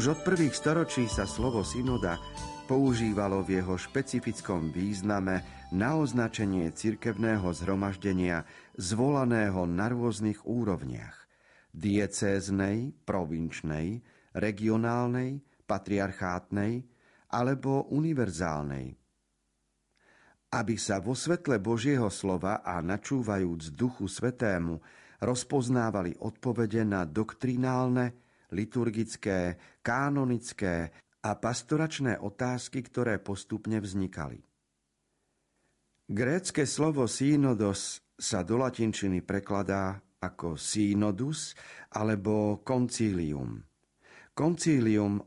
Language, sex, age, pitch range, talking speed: Slovak, male, 40-59, 95-125 Hz, 80 wpm